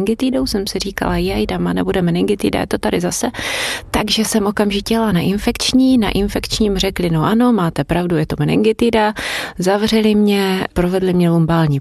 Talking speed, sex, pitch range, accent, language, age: 165 wpm, female, 175-225 Hz, native, Czech, 30-49